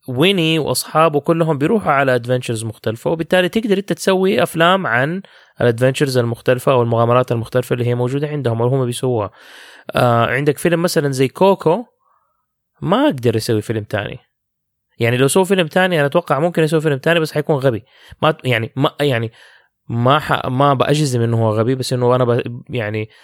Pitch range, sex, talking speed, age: 120-155 Hz, male, 165 wpm, 20-39